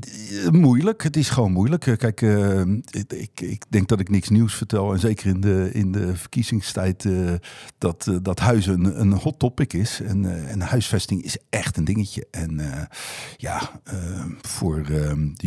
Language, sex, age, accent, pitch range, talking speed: Dutch, male, 50-69, Dutch, 90-120 Hz, 180 wpm